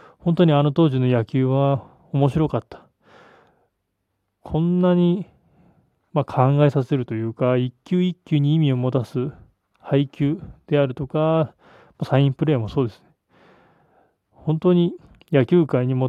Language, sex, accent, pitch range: Japanese, male, native, 125-155 Hz